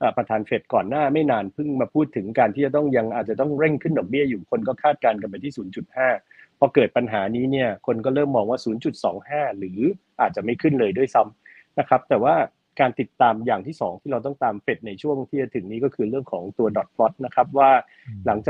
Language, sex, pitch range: Thai, male, 110-140 Hz